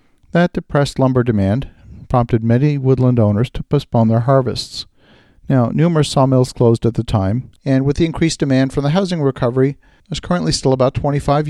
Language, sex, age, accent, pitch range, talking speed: English, male, 50-69, American, 115-145 Hz, 170 wpm